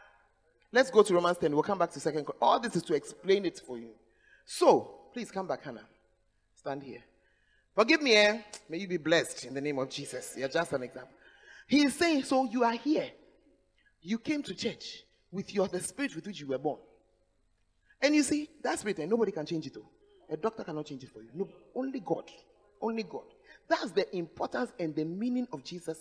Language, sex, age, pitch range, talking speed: English, male, 30-49, 155-260 Hz, 210 wpm